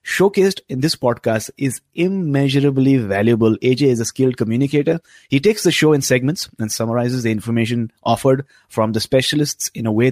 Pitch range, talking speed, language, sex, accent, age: 110-140 Hz, 170 wpm, English, male, Indian, 30-49